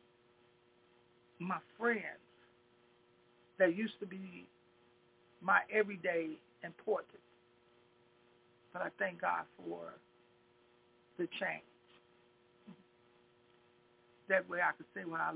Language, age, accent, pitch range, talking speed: English, 60-79, American, 120-190 Hz, 90 wpm